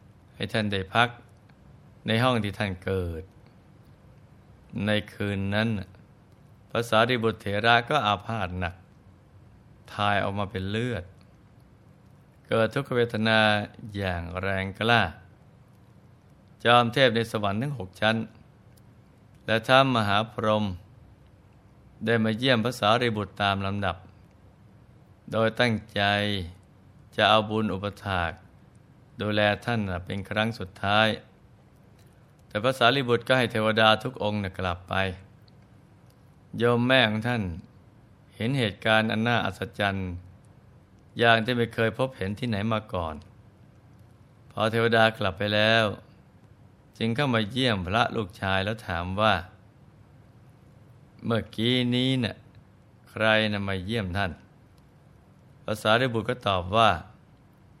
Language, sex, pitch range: Thai, male, 100-120 Hz